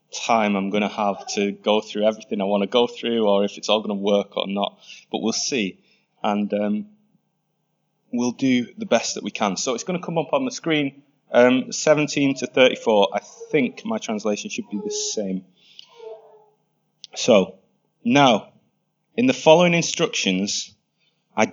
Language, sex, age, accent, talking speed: English, male, 20-39, British, 175 wpm